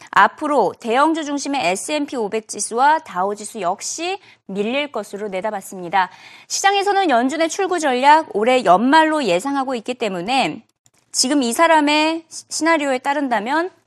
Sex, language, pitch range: female, Korean, 225-330 Hz